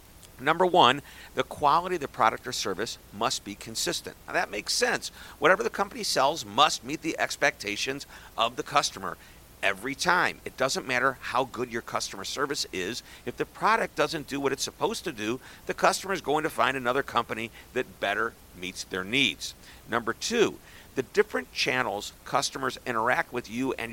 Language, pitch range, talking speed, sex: English, 115-140 Hz, 180 wpm, male